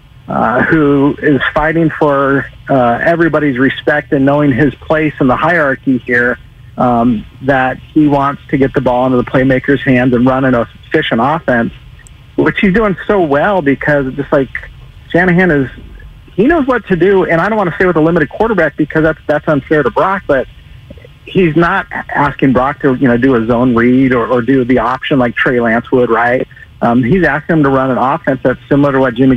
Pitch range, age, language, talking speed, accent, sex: 130-160 Hz, 50-69, English, 205 wpm, American, male